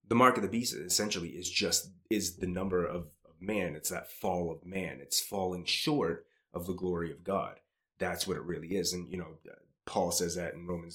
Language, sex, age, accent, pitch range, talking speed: English, male, 30-49, American, 85-100 Hz, 220 wpm